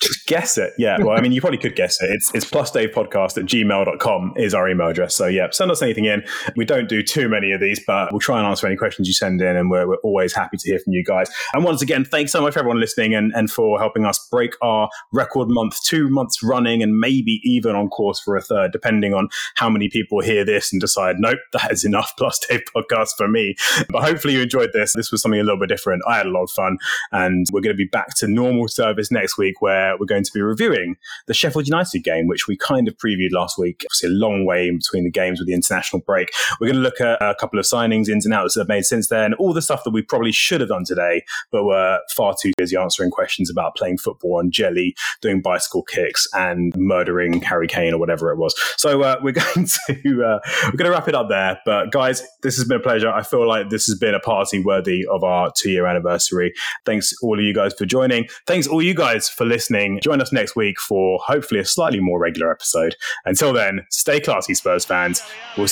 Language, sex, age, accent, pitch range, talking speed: English, male, 20-39, British, 90-125 Hz, 250 wpm